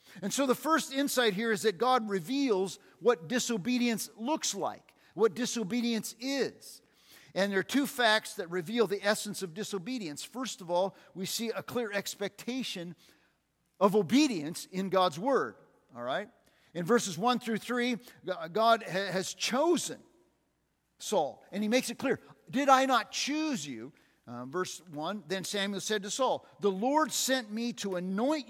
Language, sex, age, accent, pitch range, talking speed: English, male, 50-69, American, 185-245 Hz, 160 wpm